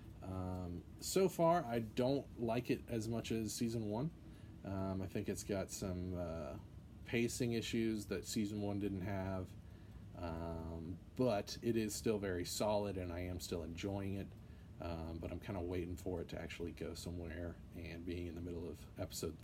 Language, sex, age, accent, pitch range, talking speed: English, male, 30-49, American, 90-110 Hz, 180 wpm